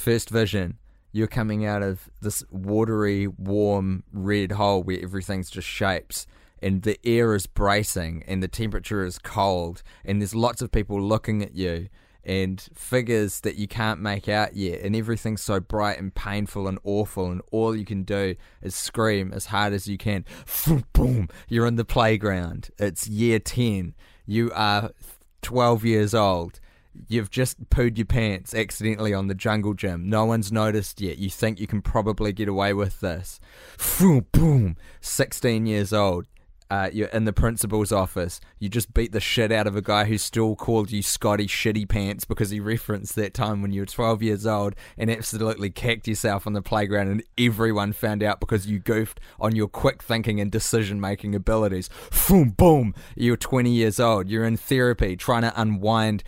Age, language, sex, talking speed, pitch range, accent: 20-39, English, male, 180 wpm, 100-115 Hz, Australian